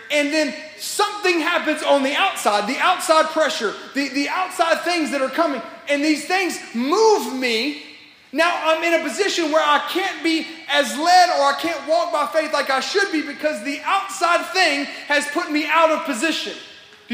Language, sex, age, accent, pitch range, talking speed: English, male, 30-49, American, 290-350 Hz, 190 wpm